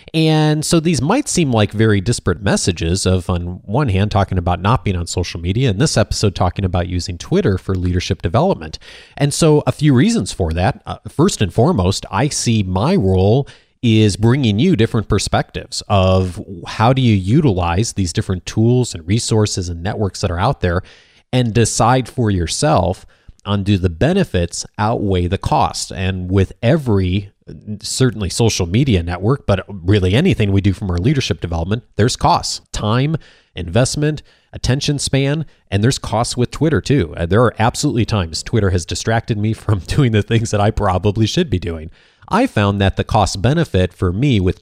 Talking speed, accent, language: 180 wpm, American, English